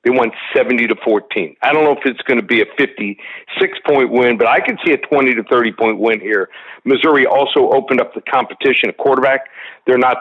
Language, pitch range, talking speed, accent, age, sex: English, 125-165 Hz, 225 wpm, American, 50-69, male